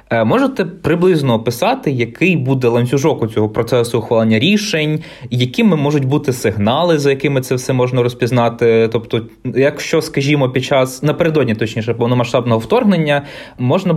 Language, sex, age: Ukrainian, male, 20-39